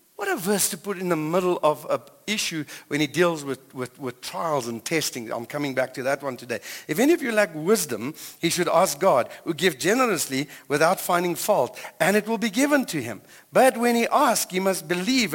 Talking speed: 225 wpm